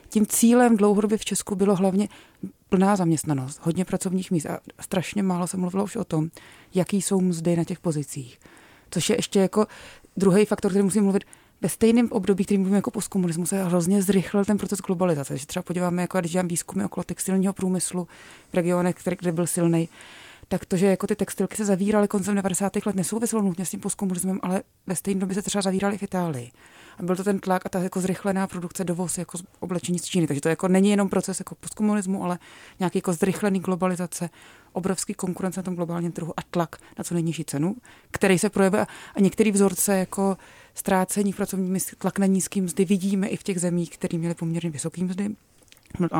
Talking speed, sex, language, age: 195 wpm, female, Czech, 30-49